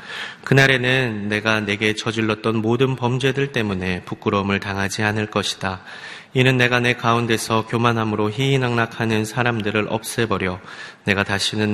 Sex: male